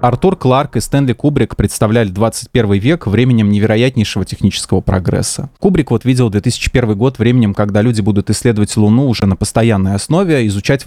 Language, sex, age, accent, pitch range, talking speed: Russian, male, 20-39, native, 105-140 Hz, 155 wpm